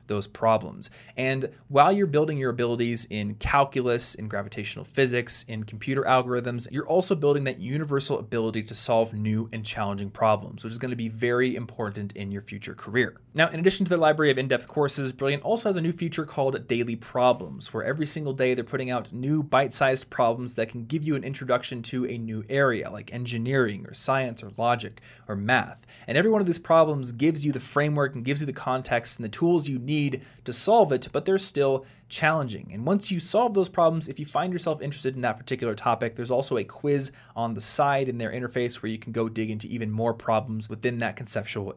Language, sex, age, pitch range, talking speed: English, male, 20-39, 115-150 Hz, 215 wpm